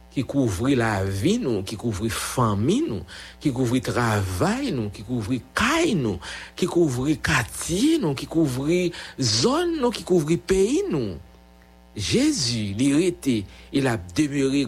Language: English